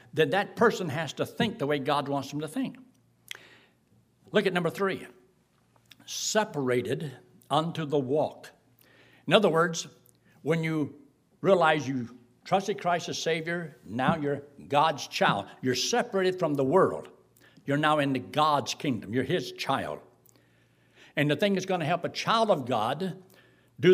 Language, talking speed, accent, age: English, 155 wpm, American, 60-79